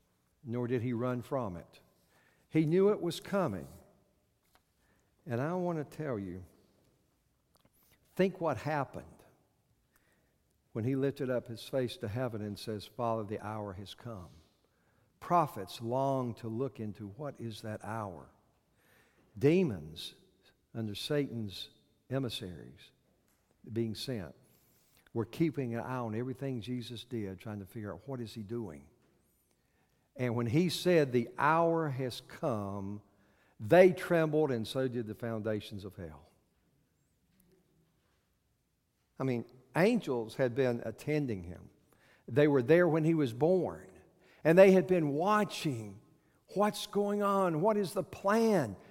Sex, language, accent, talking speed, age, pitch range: male, English, American, 135 wpm, 60-79, 110-170 Hz